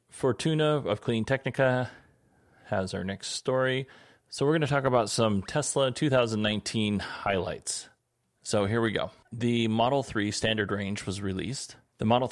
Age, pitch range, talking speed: 30-49, 100-120 Hz, 150 wpm